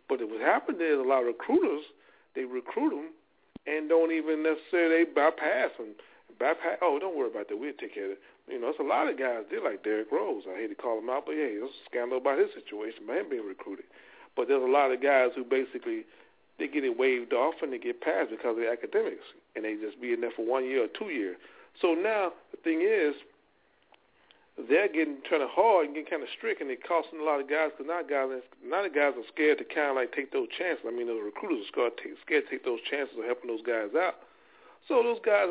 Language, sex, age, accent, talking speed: English, male, 40-59, American, 250 wpm